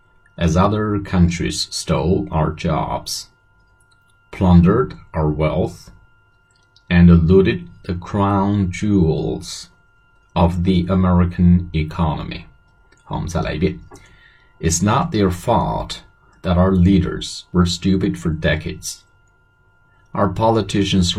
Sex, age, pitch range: male, 30-49, 85-100 Hz